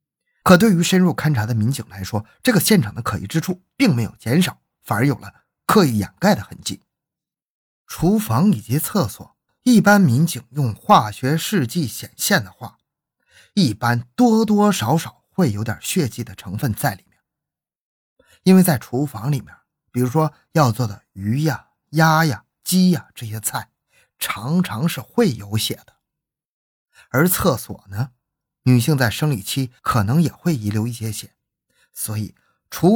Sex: male